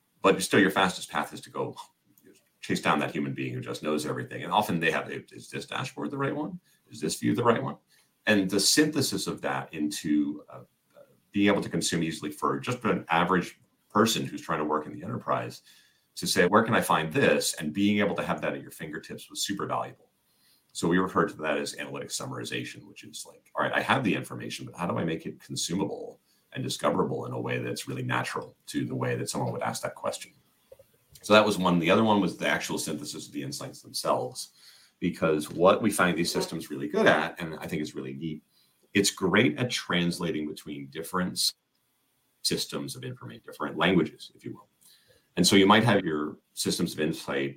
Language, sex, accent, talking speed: English, male, American, 215 wpm